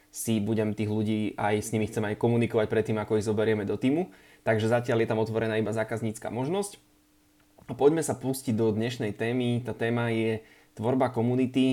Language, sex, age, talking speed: Slovak, male, 20-39, 185 wpm